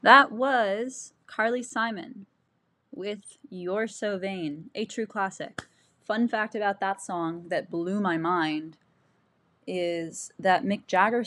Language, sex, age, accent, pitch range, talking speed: English, female, 10-29, American, 175-235 Hz, 130 wpm